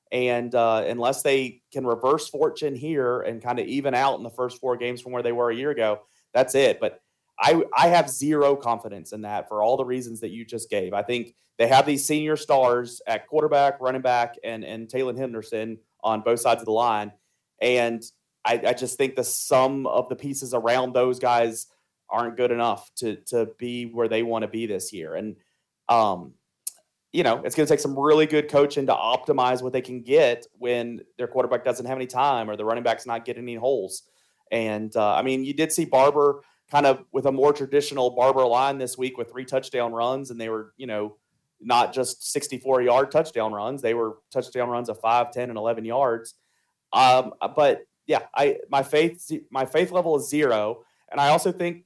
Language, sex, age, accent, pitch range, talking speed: English, male, 30-49, American, 115-140 Hz, 210 wpm